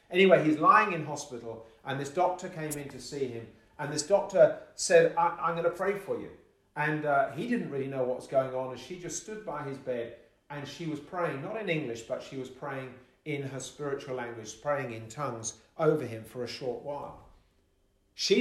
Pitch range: 120-160 Hz